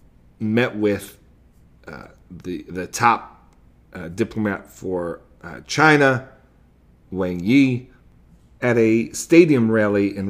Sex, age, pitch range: male, 40-59, 95-120 Hz